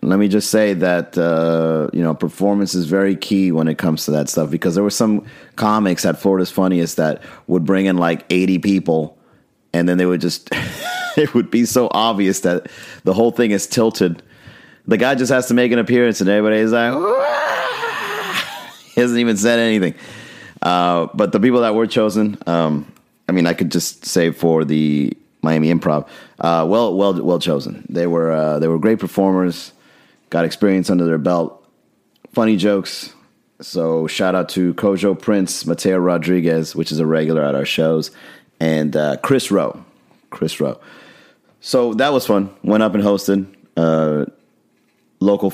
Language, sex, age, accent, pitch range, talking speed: English, male, 30-49, American, 80-105 Hz, 175 wpm